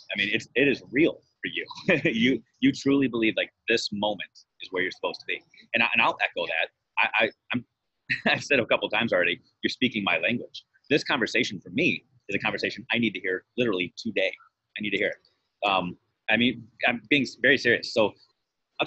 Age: 30-49